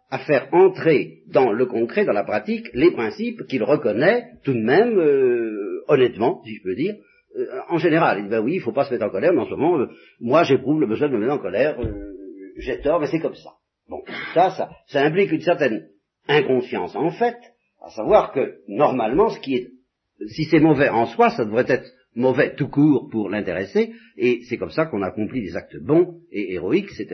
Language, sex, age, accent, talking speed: French, male, 50-69, French, 220 wpm